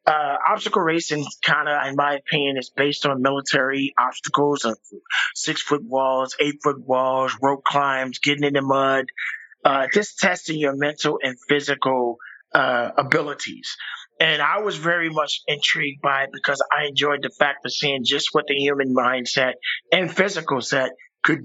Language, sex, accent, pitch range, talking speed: English, male, American, 135-160 Hz, 165 wpm